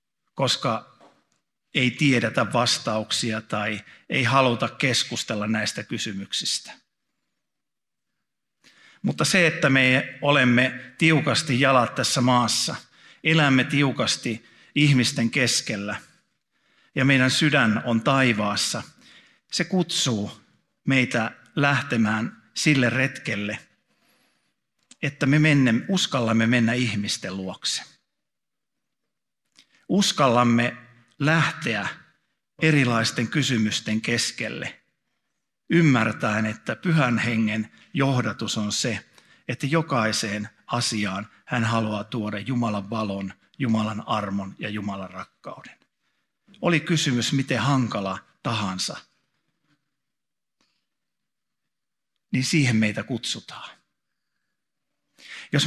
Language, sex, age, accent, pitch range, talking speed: Finnish, male, 50-69, native, 110-140 Hz, 80 wpm